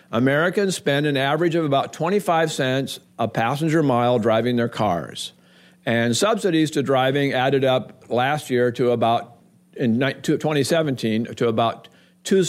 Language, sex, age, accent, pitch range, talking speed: English, male, 50-69, American, 120-155 Hz, 140 wpm